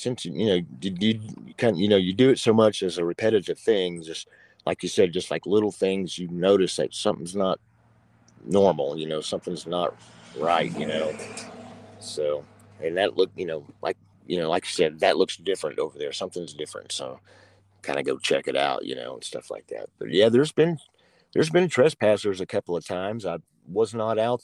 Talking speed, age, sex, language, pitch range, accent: 210 wpm, 50-69, male, English, 90-125 Hz, American